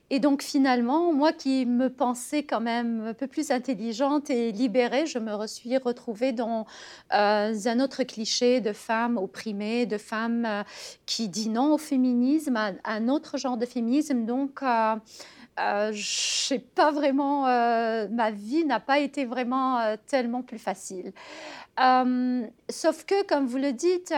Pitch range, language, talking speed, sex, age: 230-290 Hz, French, 165 wpm, female, 40-59